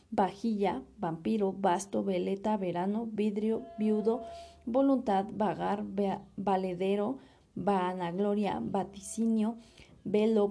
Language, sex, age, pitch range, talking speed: Spanish, female, 30-49, 195-225 Hz, 80 wpm